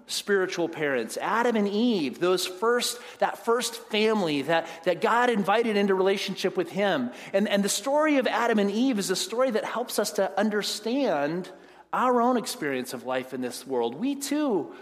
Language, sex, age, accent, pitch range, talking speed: English, male, 40-59, American, 165-240 Hz, 180 wpm